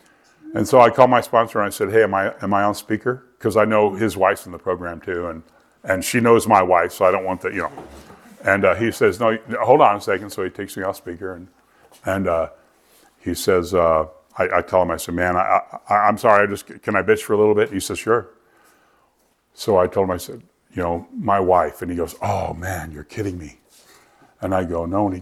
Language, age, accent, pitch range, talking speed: English, 60-79, American, 95-140 Hz, 250 wpm